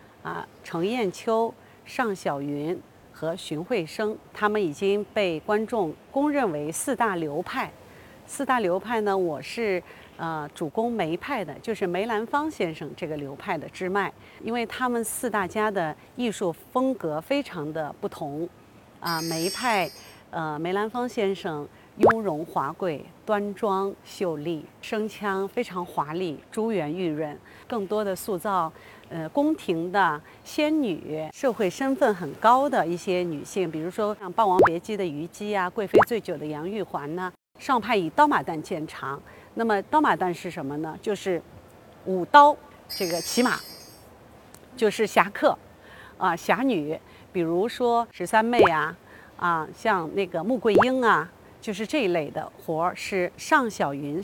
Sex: female